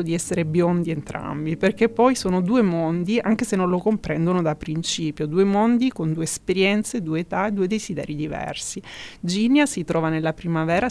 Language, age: Italian, 30-49